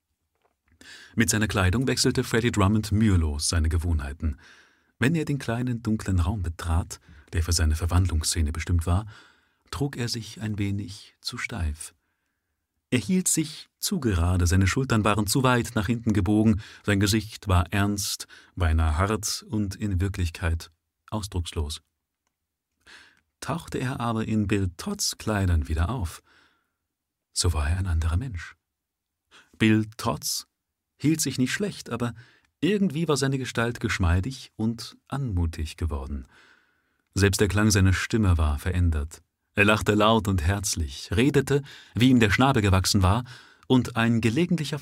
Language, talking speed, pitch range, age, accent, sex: German, 140 wpm, 85-115 Hz, 40-59, German, male